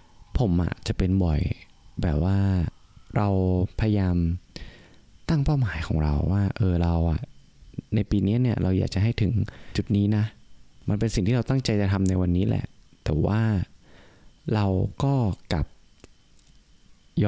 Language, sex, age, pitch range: Thai, male, 20-39, 85-115 Hz